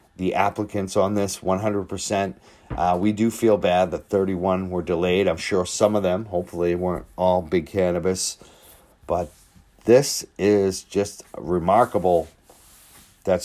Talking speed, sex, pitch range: 135 wpm, male, 90-105 Hz